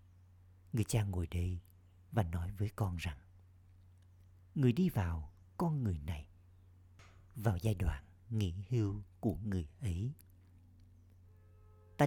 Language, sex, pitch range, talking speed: Vietnamese, male, 90-105 Hz, 120 wpm